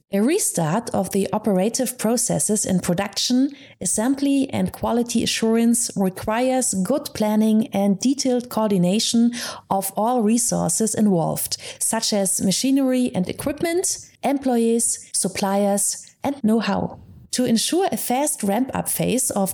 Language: English